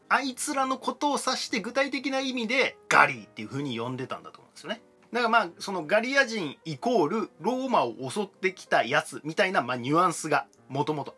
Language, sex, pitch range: Japanese, male, 140-235 Hz